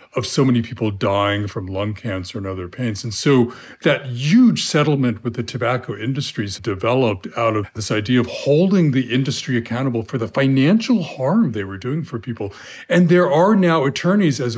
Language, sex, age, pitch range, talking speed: English, male, 40-59, 115-150 Hz, 185 wpm